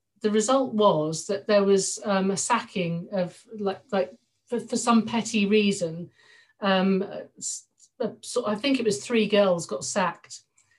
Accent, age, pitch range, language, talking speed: British, 40-59, 185-220 Hz, English, 160 wpm